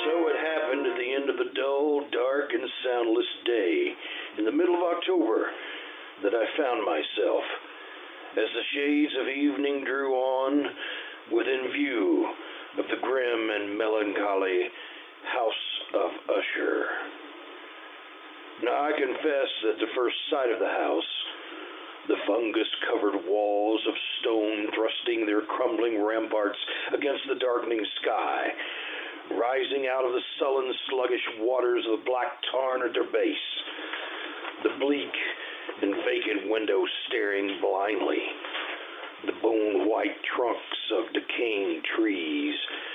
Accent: American